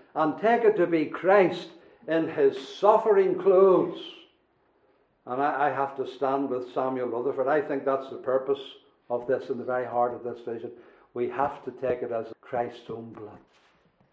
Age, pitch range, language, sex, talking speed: 60-79, 135-175 Hz, English, male, 180 wpm